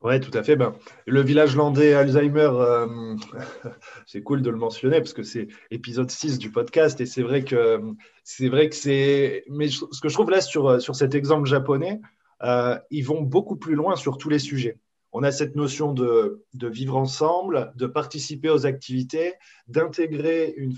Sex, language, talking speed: male, French, 190 wpm